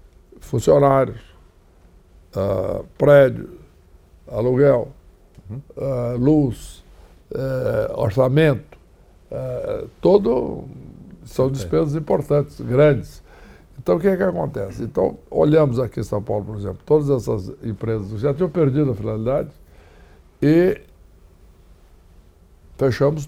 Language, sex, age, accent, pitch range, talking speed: Portuguese, male, 60-79, Brazilian, 90-145 Hz, 100 wpm